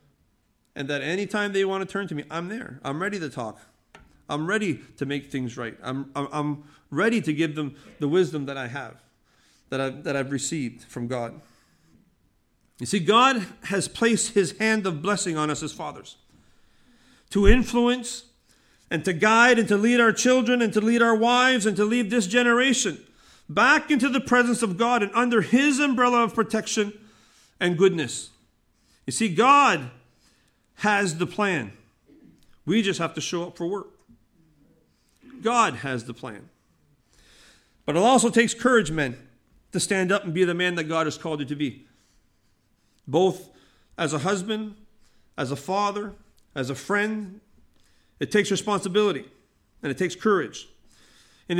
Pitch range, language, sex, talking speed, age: 155-230 Hz, English, male, 165 wpm, 40-59